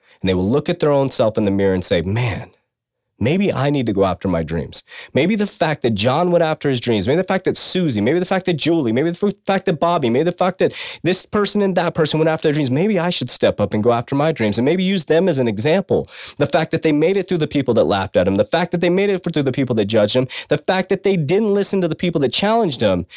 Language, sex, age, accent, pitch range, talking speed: English, male, 30-49, American, 115-170 Hz, 295 wpm